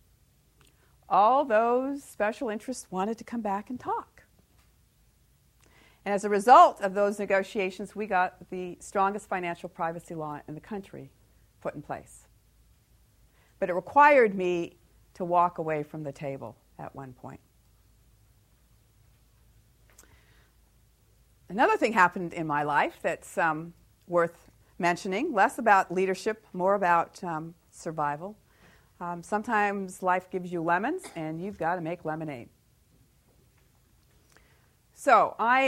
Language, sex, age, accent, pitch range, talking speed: English, female, 50-69, American, 165-215 Hz, 125 wpm